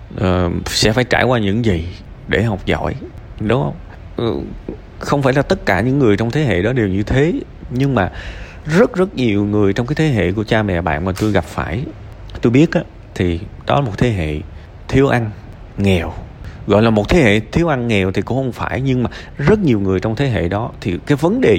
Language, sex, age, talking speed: Vietnamese, male, 20-39, 220 wpm